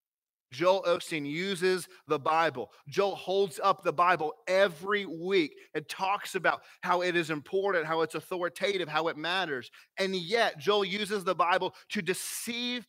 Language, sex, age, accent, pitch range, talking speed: English, male, 30-49, American, 155-210 Hz, 155 wpm